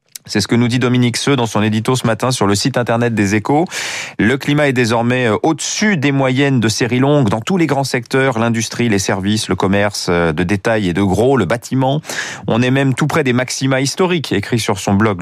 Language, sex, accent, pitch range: French, male, French, 105-140 Hz